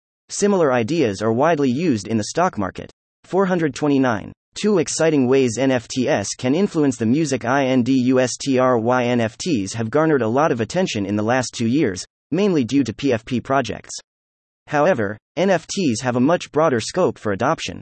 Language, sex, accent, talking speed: English, male, American, 150 wpm